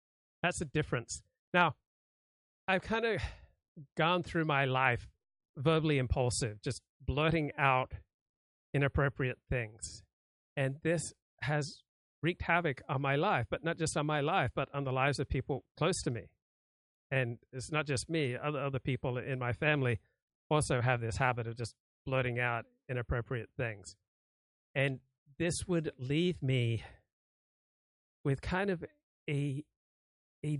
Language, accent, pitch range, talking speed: English, American, 125-150 Hz, 140 wpm